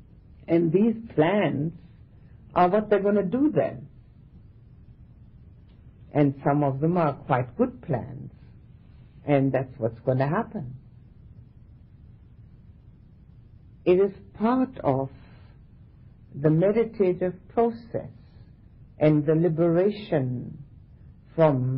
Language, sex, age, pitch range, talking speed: English, female, 60-79, 125-165 Hz, 95 wpm